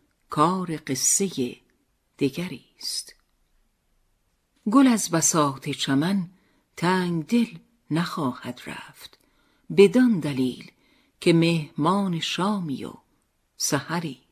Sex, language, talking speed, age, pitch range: female, Persian, 80 wpm, 50-69, 140-200 Hz